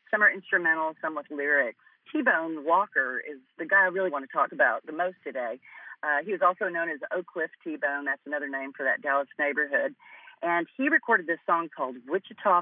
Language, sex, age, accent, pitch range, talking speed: English, female, 40-59, American, 150-210 Hz, 205 wpm